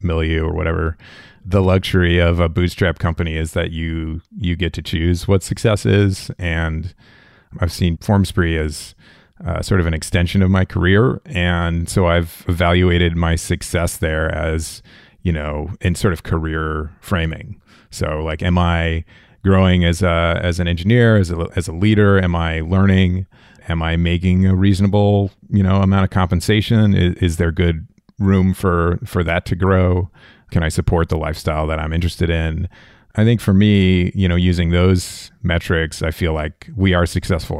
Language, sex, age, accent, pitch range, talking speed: English, male, 30-49, American, 80-95 Hz, 175 wpm